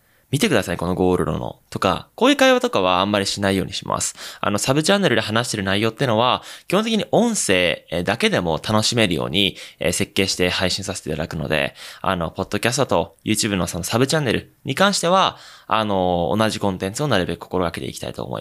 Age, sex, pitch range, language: 20-39, male, 90-135 Hz, Japanese